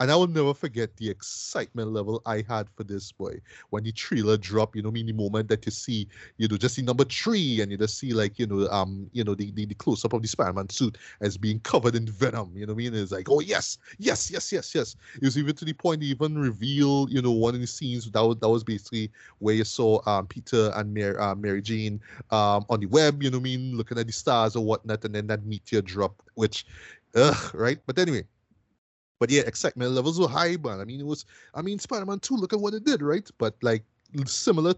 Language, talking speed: English, 255 wpm